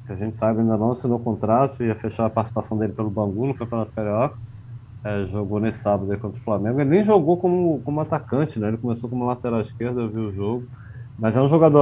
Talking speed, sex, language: 230 wpm, male, Portuguese